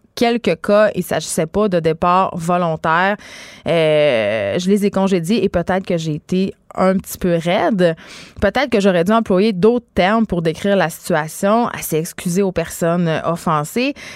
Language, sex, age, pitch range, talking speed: French, female, 20-39, 165-215 Hz, 165 wpm